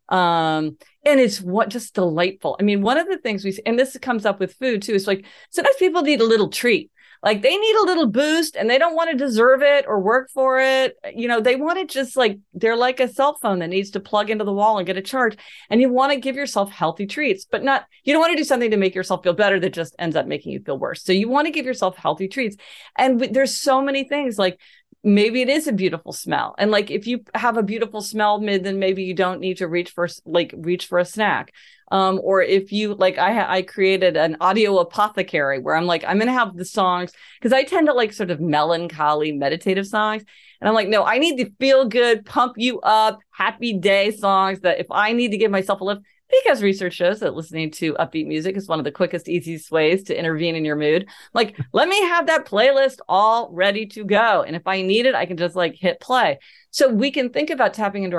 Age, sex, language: 30-49, female, English